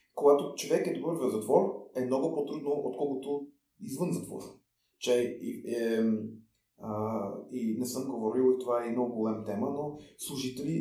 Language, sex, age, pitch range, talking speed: Bulgarian, male, 30-49, 125-165 Hz, 150 wpm